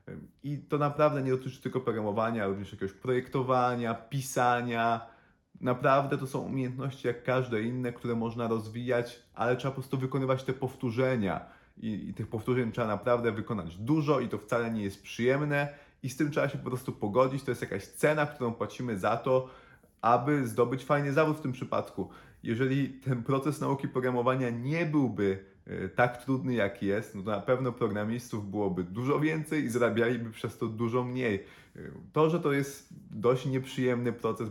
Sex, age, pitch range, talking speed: male, 30-49, 110-130 Hz, 170 wpm